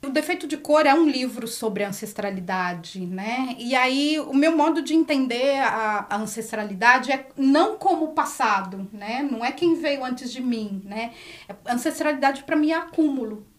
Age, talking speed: 40-59, 170 wpm